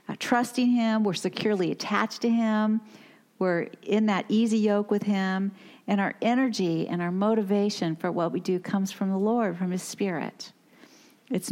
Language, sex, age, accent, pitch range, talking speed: English, female, 50-69, American, 175-215 Hz, 170 wpm